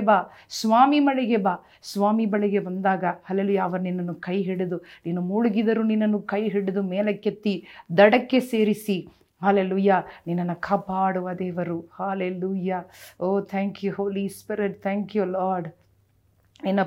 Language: Kannada